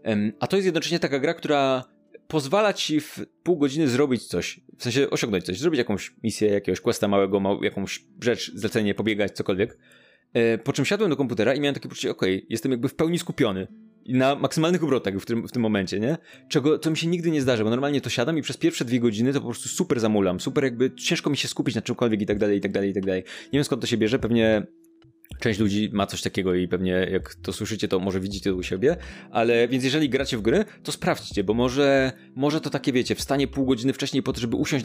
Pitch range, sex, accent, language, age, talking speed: 105-140 Hz, male, native, Polish, 20-39, 235 wpm